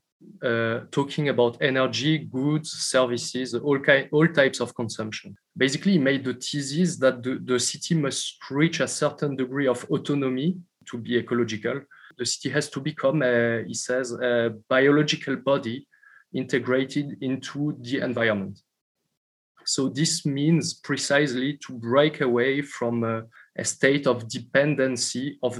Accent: French